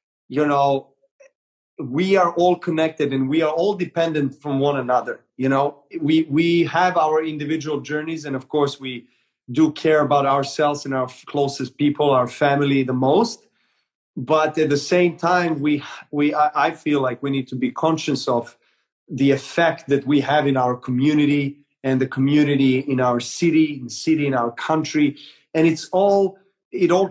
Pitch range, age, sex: 135-155 Hz, 30-49, male